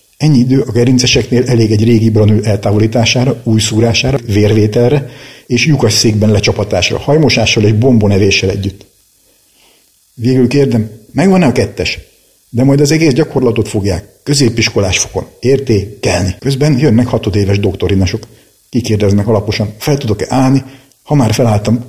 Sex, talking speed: male, 125 wpm